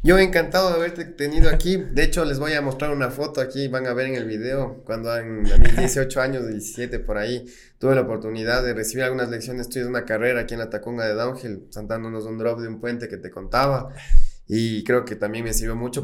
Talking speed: 230 wpm